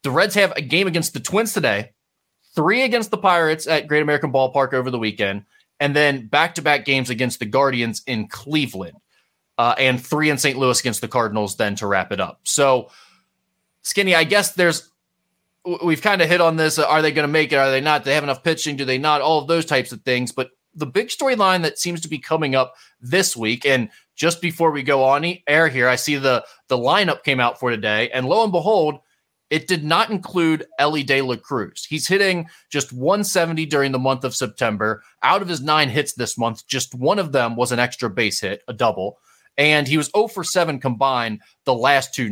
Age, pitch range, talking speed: 20-39, 125-165 Hz, 220 wpm